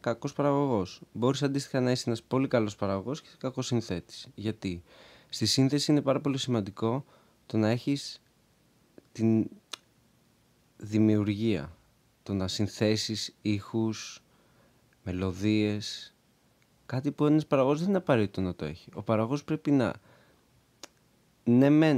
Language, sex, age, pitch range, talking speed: Greek, male, 20-39, 105-130 Hz, 125 wpm